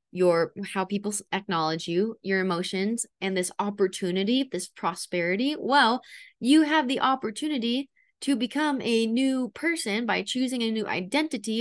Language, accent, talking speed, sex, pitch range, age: English, American, 140 wpm, female, 190-245 Hz, 20-39